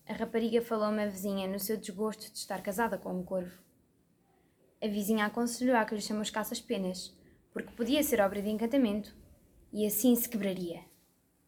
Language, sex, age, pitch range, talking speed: Portuguese, female, 10-29, 200-275 Hz, 175 wpm